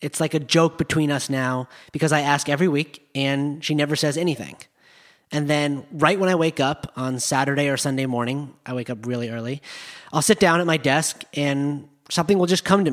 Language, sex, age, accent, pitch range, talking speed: English, male, 30-49, American, 135-170 Hz, 215 wpm